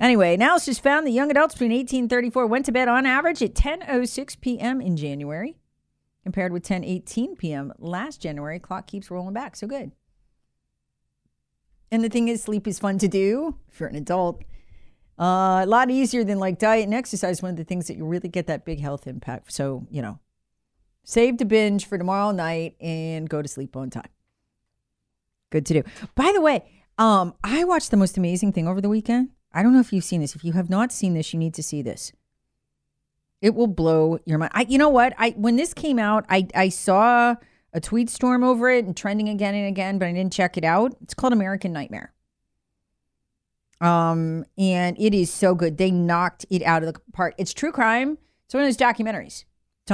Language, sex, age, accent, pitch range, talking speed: English, female, 40-59, American, 165-235 Hz, 210 wpm